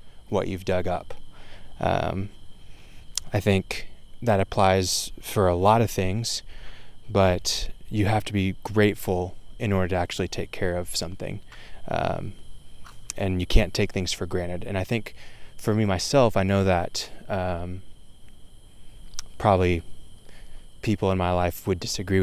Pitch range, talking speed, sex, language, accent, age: 90-100 Hz, 145 wpm, male, English, American, 20-39